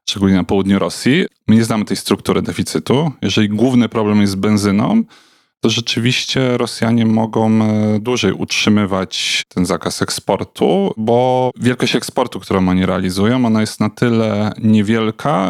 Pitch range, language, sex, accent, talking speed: 95-115 Hz, Polish, male, native, 140 wpm